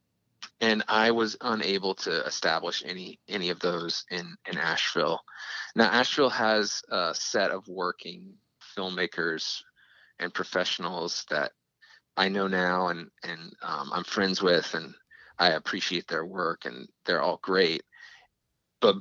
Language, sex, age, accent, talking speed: English, male, 30-49, American, 135 wpm